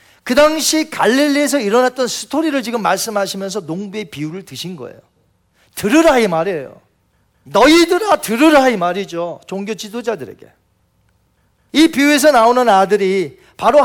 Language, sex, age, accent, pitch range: Korean, male, 40-59, native, 170-235 Hz